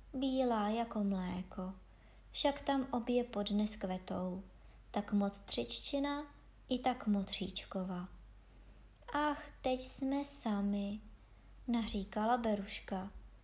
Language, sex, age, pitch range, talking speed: Czech, male, 20-39, 200-280 Hz, 85 wpm